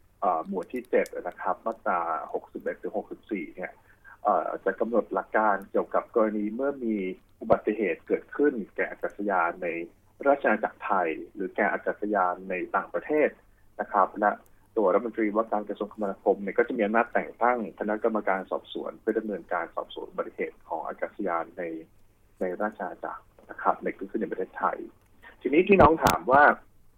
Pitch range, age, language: 100-130 Hz, 20-39, English